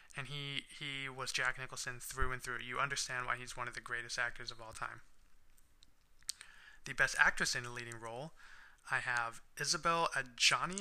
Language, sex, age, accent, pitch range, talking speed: English, male, 20-39, American, 120-145 Hz, 180 wpm